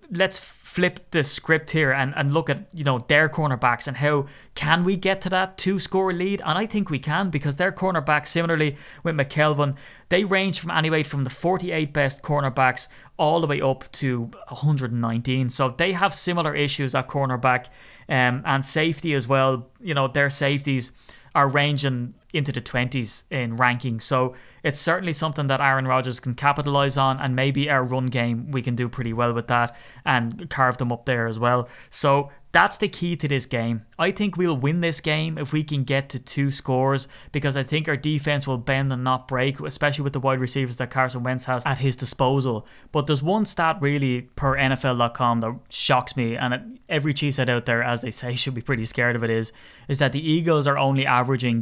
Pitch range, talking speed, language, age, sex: 125-150 Hz, 205 wpm, English, 20-39, male